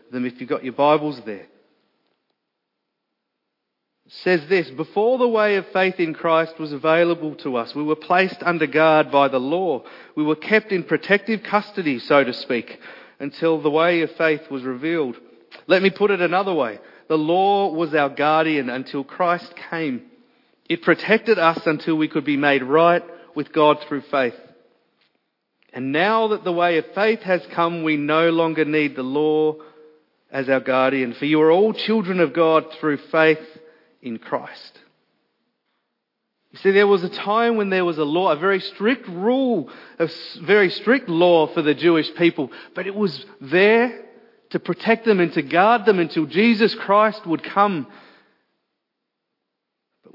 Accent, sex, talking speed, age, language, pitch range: Australian, male, 170 wpm, 40-59, English, 150-190 Hz